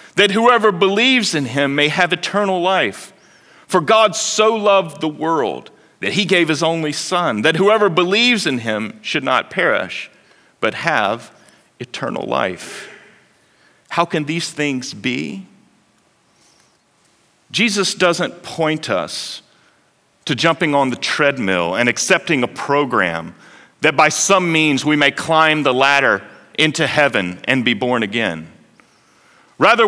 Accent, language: American, English